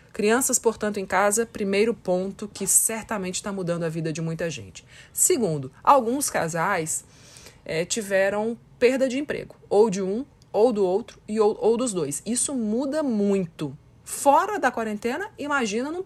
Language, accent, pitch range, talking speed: Portuguese, Brazilian, 170-230 Hz, 155 wpm